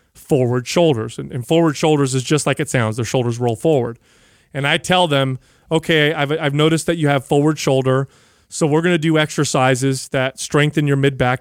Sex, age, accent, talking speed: male, 30-49, American, 195 wpm